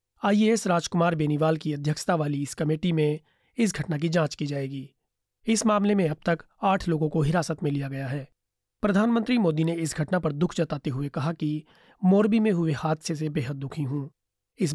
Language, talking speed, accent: Hindi, 195 wpm, native